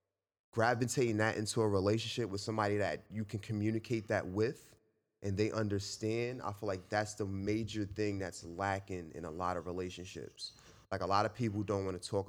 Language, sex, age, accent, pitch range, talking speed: English, male, 20-39, American, 95-110 Hz, 190 wpm